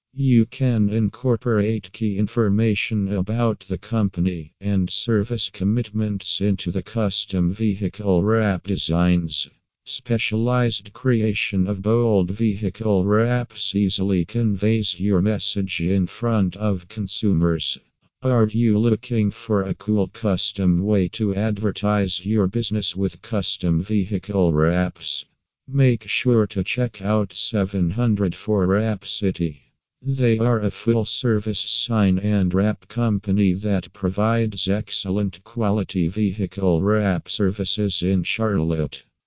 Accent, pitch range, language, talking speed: American, 95-110 Hz, English, 110 wpm